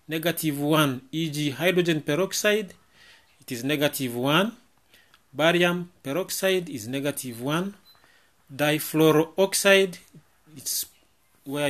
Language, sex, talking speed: English, male, 85 wpm